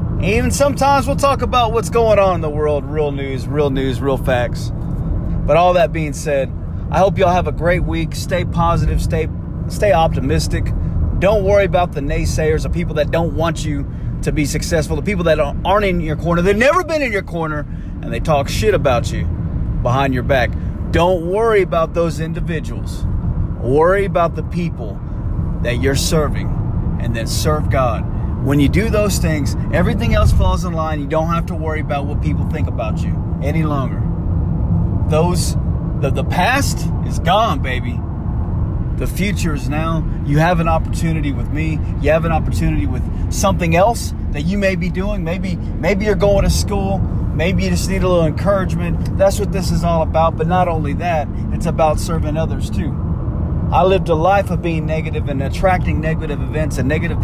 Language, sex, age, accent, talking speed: English, male, 30-49, American, 190 wpm